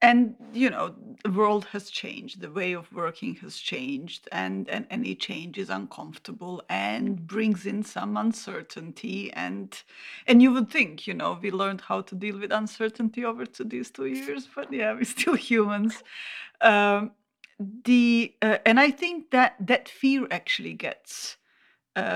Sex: female